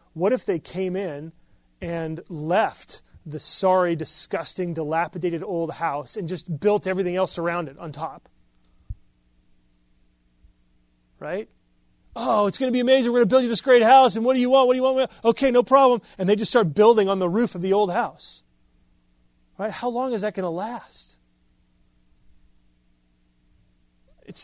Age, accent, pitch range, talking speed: 30-49, American, 130-190 Hz, 170 wpm